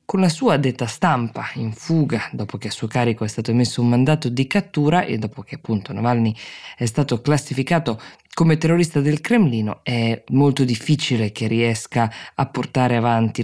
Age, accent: 20-39, native